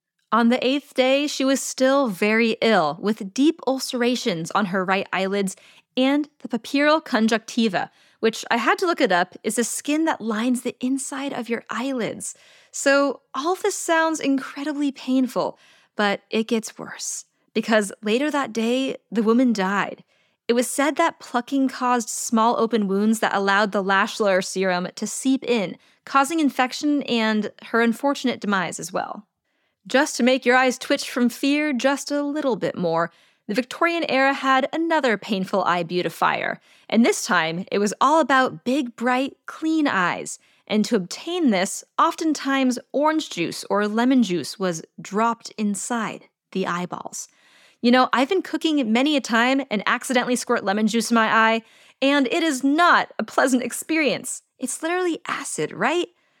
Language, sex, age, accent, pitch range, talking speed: English, female, 20-39, American, 215-280 Hz, 165 wpm